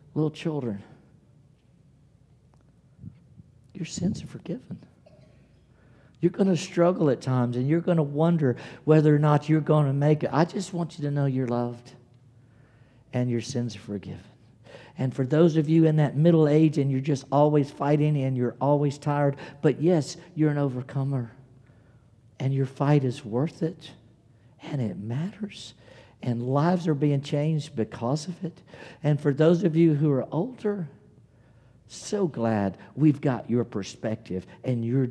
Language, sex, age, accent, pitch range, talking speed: English, male, 50-69, American, 115-150 Hz, 160 wpm